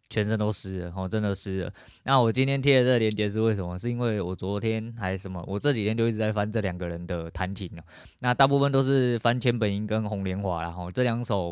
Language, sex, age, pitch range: Chinese, male, 20-39, 95-115 Hz